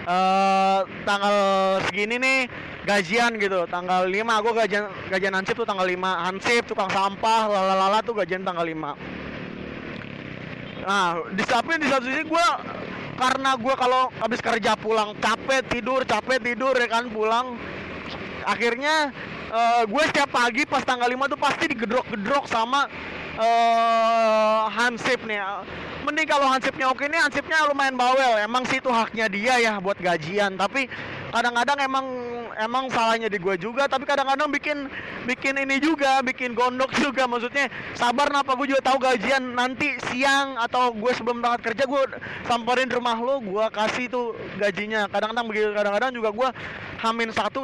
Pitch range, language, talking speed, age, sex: 205-260 Hz, Indonesian, 150 wpm, 20-39, male